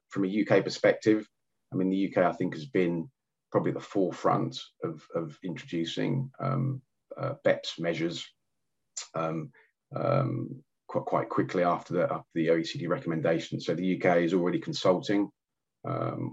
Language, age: English, 30-49